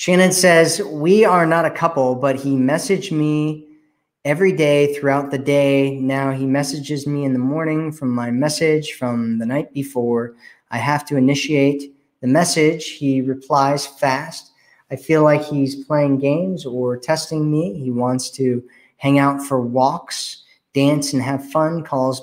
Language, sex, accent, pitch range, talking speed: English, male, American, 135-160 Hz, 160 wpm